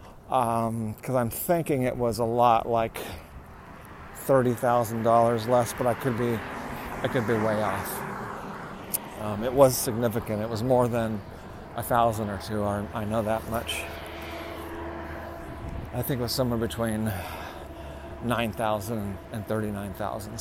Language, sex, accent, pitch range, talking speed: English, male, American, 110-140 Hz, 135 wpm